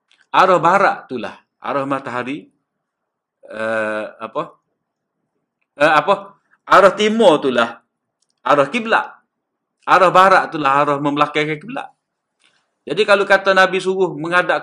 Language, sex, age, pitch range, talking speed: Malay, male, 50-69, 125-165 Hz, 105 wpm